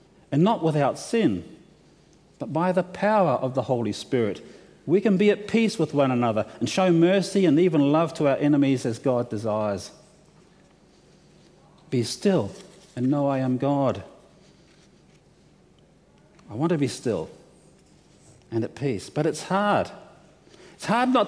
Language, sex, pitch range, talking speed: English, male, 135-180 Hz, 150 wpm